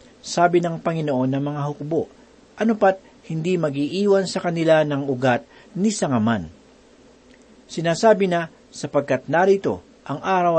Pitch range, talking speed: 140-180 Hz, 120 wpm